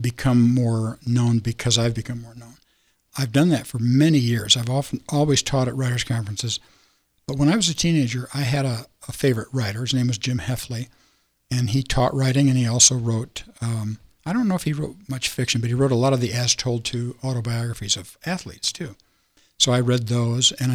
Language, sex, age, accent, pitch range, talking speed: English, male, 60-79, American, 115-135 Hz, 210 wpm